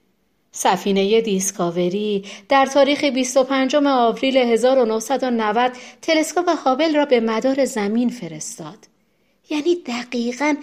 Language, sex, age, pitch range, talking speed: Persian, female, 40-59, 185-270 Hz, 95 wpm